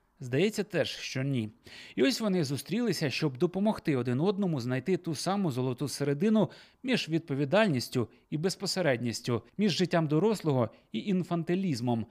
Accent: native